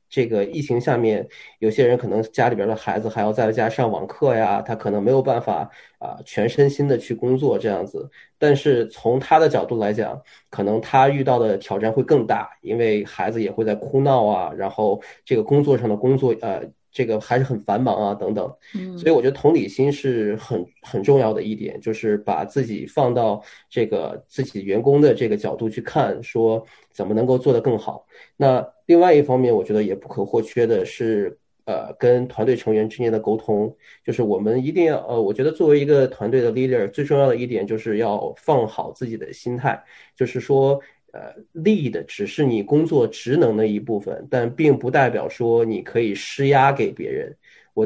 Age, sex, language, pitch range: 20-39, male, Chinese, 110-140 Hz